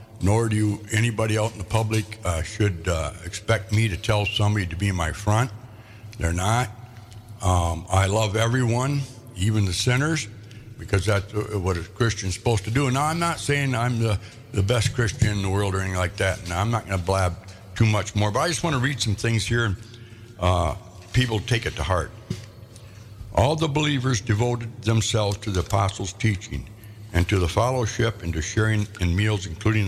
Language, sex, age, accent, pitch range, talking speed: English, male, 60-79, American, 100-115 Hz, 195 wpm